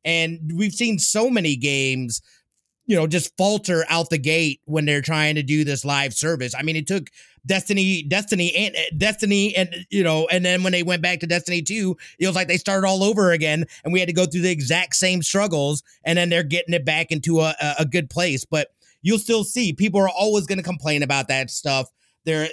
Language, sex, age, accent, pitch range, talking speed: English, male, 30-49, American, 150-190 Hz, 225 wpm